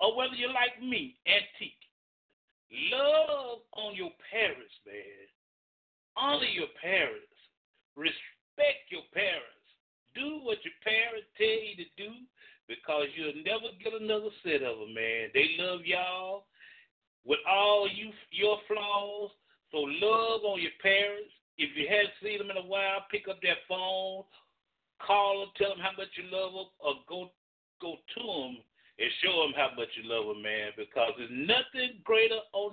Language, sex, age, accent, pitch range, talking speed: English, male, 50-69, American, 170-240 Hz, 160 wpm